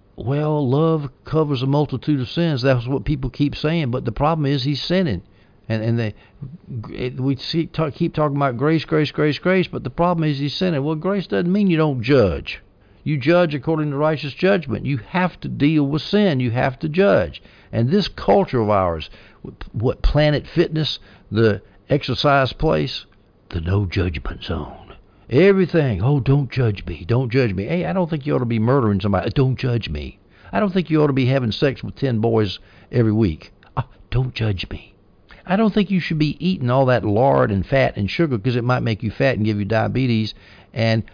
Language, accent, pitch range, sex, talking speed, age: English, American, 105-150 Hz, male, 205 wpm, 60-79